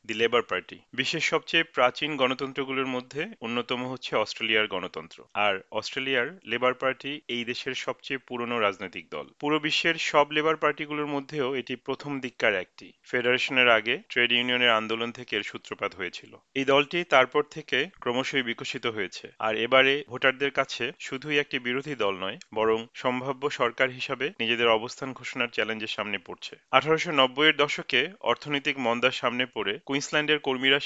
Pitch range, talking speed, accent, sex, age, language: 120-145 Hz, 85 wpm, native, male, 40-59, Bengali